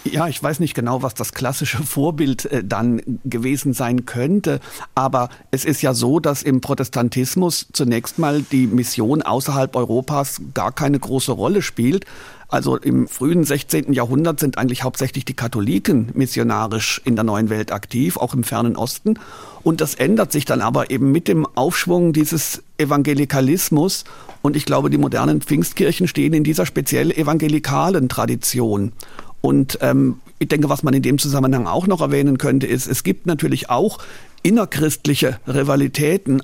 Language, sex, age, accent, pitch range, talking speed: German, male, 50-69, German, 125-155 Hz, 160 wpm